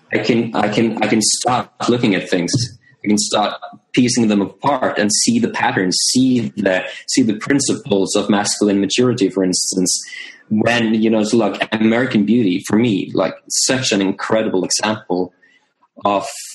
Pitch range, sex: 95-110 Hz, male